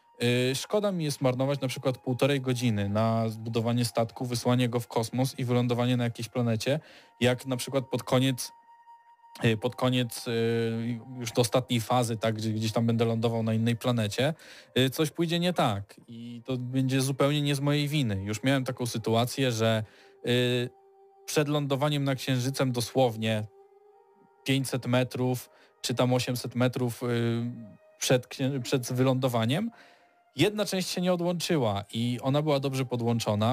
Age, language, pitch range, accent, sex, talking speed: 20-39, Polish, 120-140 Hz, native, male, 145 wpm